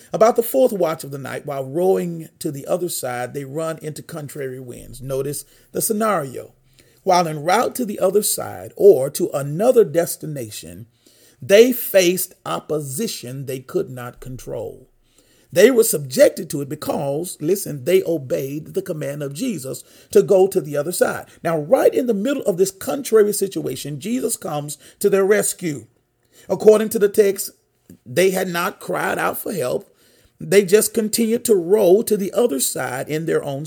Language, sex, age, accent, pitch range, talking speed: English, male, 40-59, American, 130-215 Hz, 170 wpm